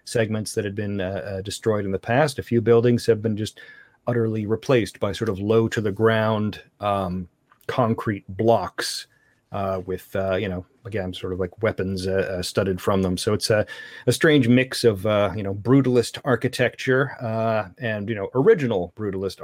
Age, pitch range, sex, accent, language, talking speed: 40-59, 95-120 Hz, male, American, English, 190 wpm